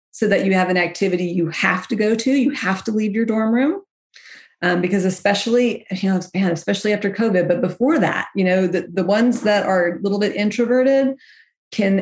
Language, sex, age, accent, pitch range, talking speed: English, female, 40-59, American, 175-220 Hz, 210 wpm